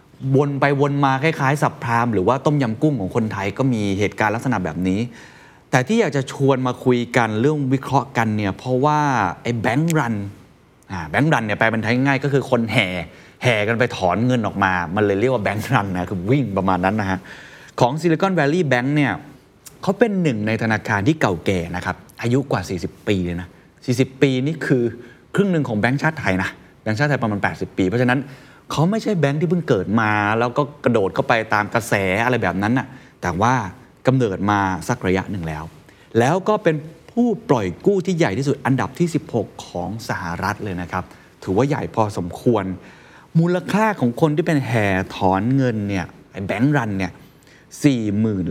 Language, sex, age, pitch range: Thai, male, 20-39, 100-140 Hz